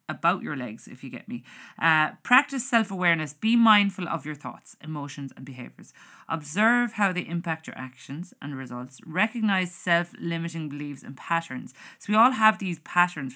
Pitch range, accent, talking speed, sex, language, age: 145-200 Hz, Irish, 165 wpm, female, English, 30-49